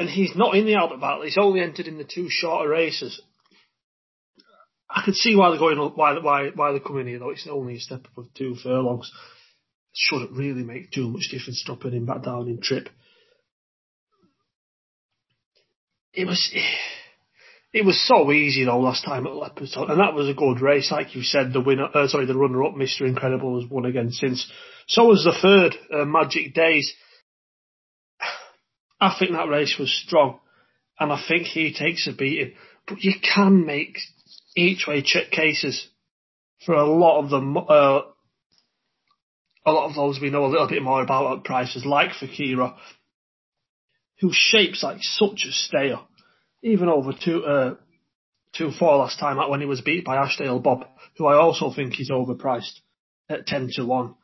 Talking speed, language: 180 wpm, English